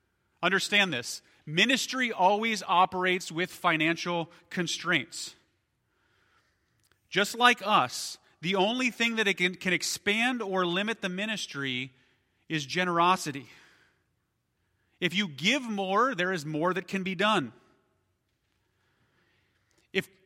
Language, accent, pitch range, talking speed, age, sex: English, American, 165-215 Hz, 105 wpm, 30-49, male